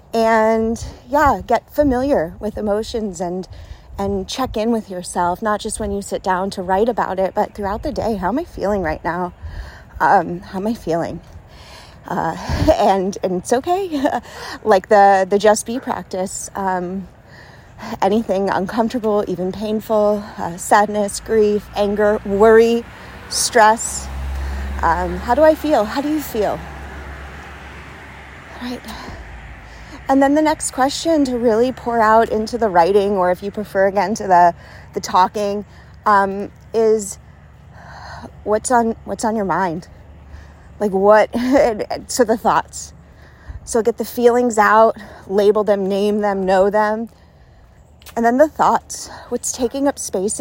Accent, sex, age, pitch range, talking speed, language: American, female, 30-49, 185-230 Hz, 145 wpm, English